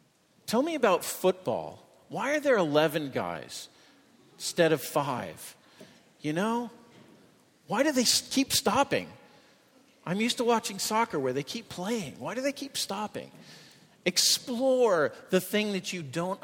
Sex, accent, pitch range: male, American, 130-185 Hz